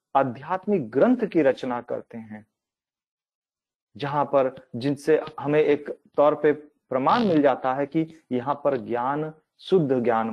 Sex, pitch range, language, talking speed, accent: male, 135-175 Hz, Hindi, 135 wpm, native